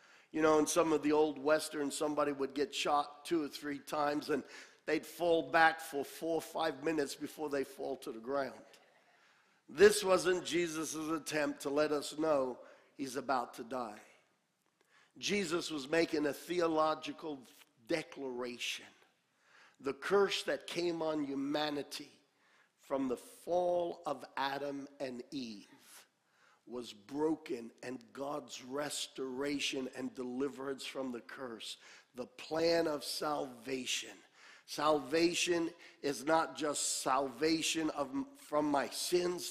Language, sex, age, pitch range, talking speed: English, male, 50-69, 140-165 Hz, 130 wpm